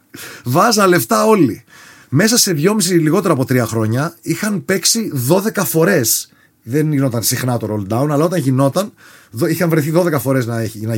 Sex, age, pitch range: male, 30-49, 130-205 Hz